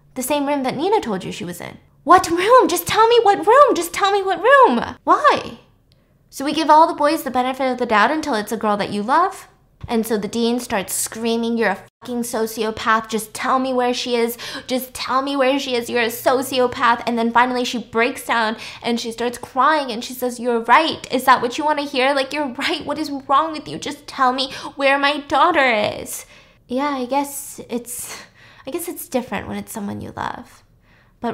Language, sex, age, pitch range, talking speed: English, female, 10-29, 205-275 Hz, 225 wpm